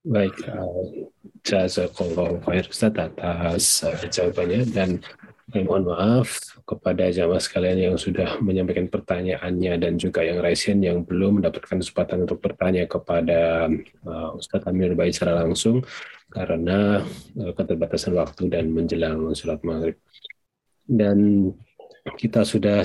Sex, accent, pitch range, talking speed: male, native, 85-100 Hz, 105 wpm